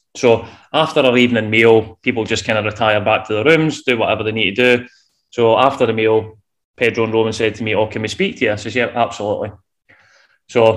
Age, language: 20-39, English